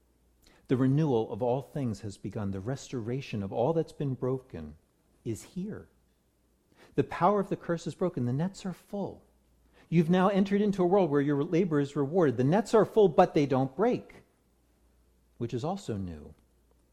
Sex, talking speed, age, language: male, 175 wpm, 50-69, English